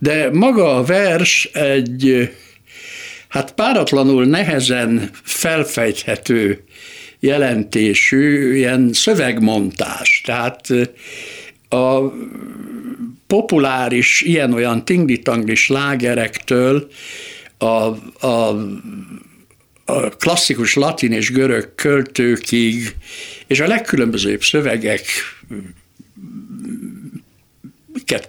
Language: Hungarian